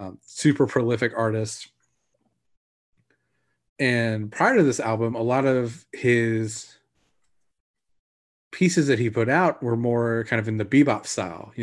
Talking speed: 140 wpm